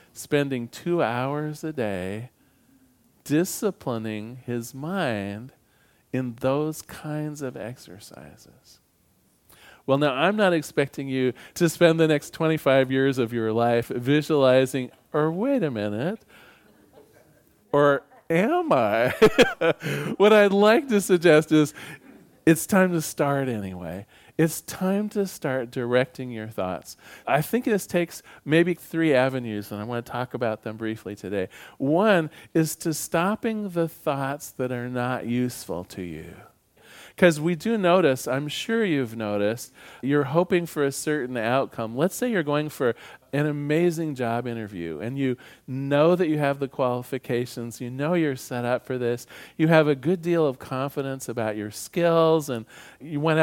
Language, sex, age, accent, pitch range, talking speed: English, male, 40-59, American, 120-165 Hz, 150 wpm